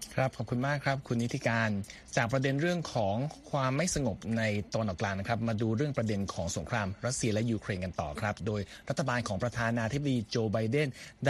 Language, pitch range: Thai, 110-145 Hz